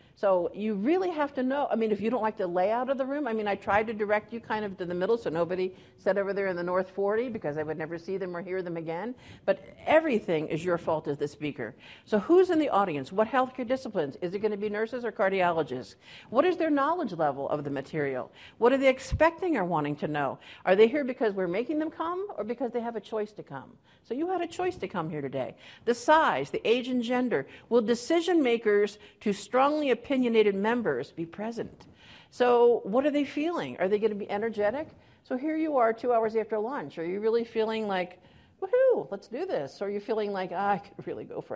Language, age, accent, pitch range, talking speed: English, 50-69, American, 180-250 Hz, 240 wpm